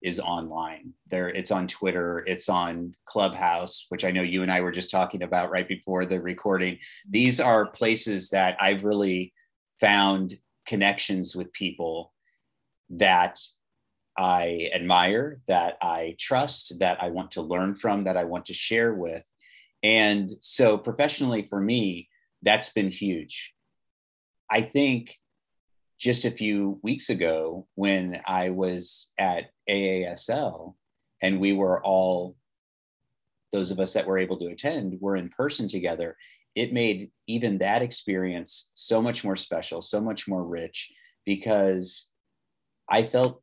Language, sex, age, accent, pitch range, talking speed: English, male, 30-49, American, 90-105 Hz, 140 wpm